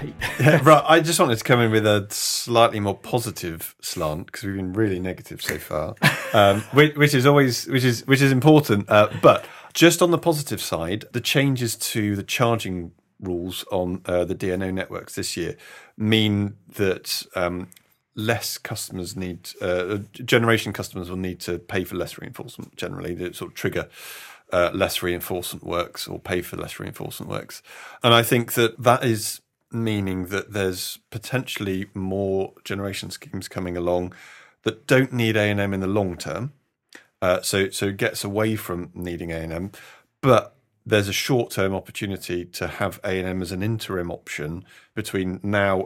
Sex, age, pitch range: male, 40-59, 95-115 Hz